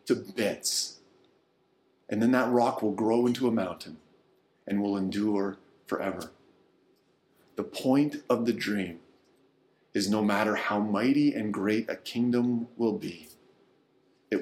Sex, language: male, English